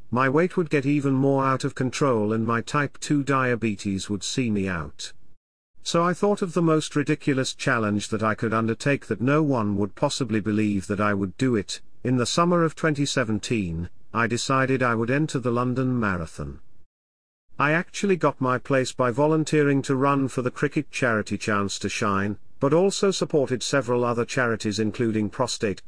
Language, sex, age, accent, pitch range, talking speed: English, male, 50-69, British, 105-145 Hz, 180 wpm